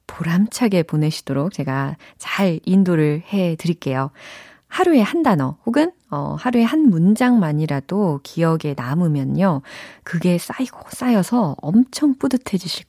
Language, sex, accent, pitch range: Korean, female, native, 155-245 Hz